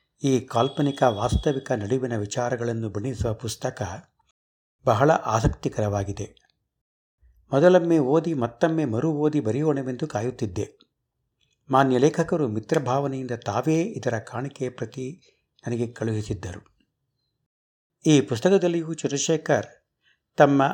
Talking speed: 85 wpm